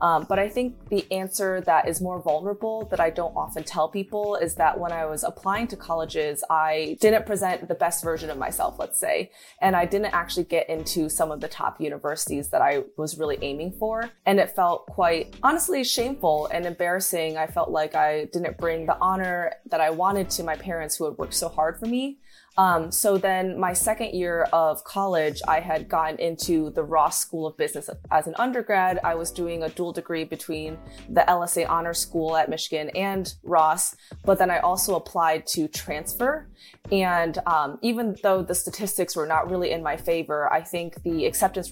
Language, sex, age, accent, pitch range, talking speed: English, female, 20-39, American, 160-190 Hz, 200 wpm